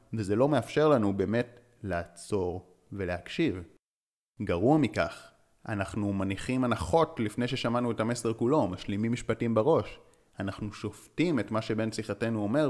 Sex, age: male, 30-49